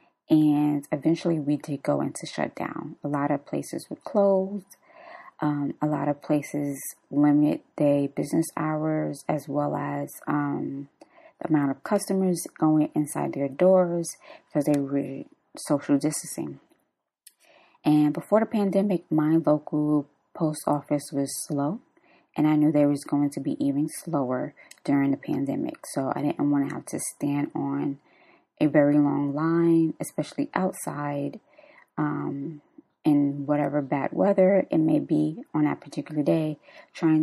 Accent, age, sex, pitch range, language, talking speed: American, 20-39, female, 145-195 Hz, English, 145 wpm